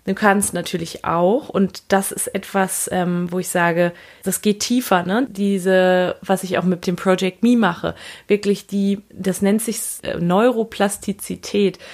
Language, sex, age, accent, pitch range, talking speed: German, female, 30-49, German, 180-230 Hz, 160 wpm